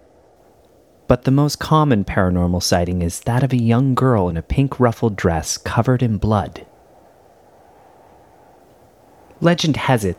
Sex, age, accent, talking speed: male, 30-49, American, 135 wpm